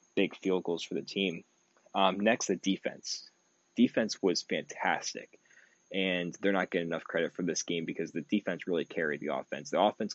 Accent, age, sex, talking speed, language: American, 20-39, male, 185 wpm, English